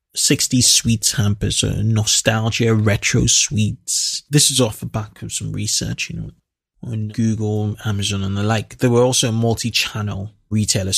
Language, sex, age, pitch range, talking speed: English, male, 20-39, 110-130 Hz, 155 wpm